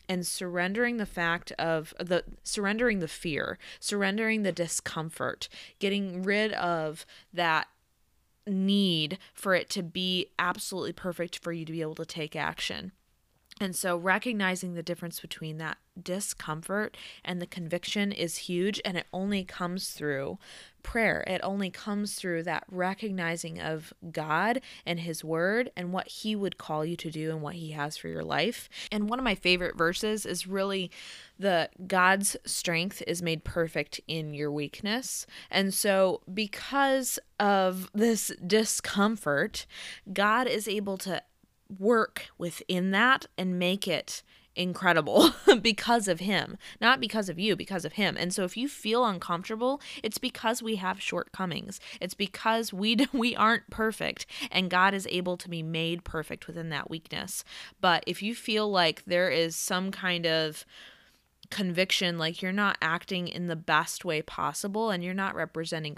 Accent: American